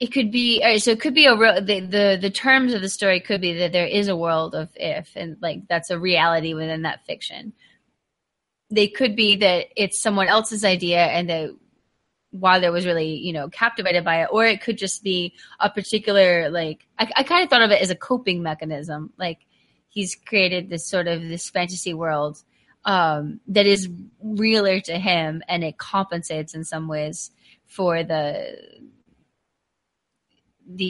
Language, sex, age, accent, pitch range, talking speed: English, female, 20-39, American, 175-220 Hz, 185 wpm